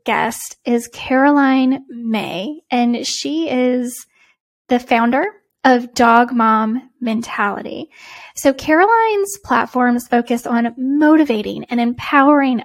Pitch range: 230-290 Hz